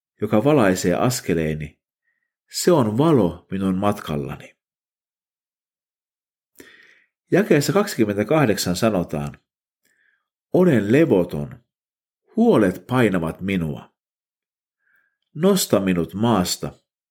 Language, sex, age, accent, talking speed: Finnish, male, 50-69, native, 65 wpm